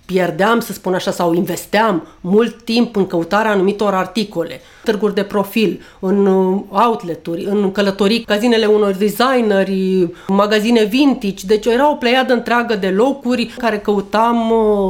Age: 40-59